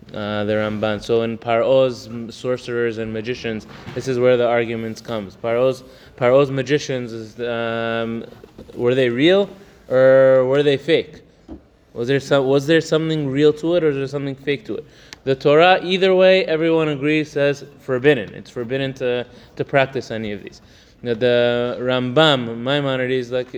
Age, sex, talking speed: 20-39, male, 160 wpm